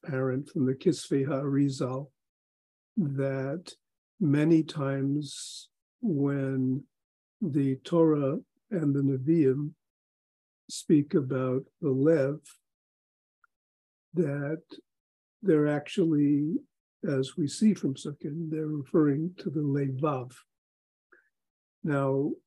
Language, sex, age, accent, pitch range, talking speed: English, male, 50-69, American, 140-170 Hz, 85 wpm